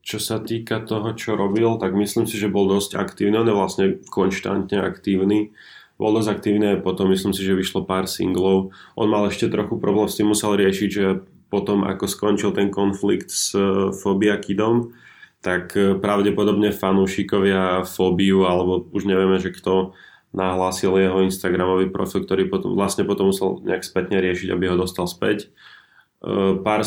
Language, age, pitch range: Slovak, 20-39, 90-100 Hz